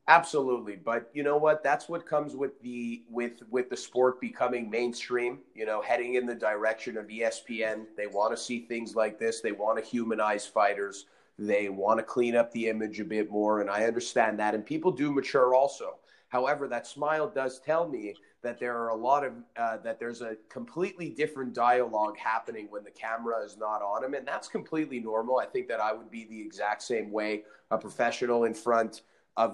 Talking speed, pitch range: 205 wpm, 110-130 Hz